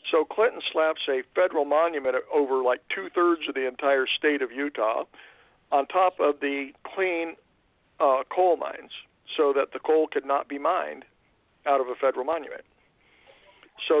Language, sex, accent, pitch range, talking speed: English, male, American, 135-185 Hz, 160 wpm